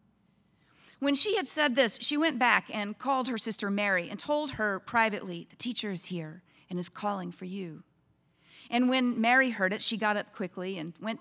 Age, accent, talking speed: 40-59, American, 200 wpm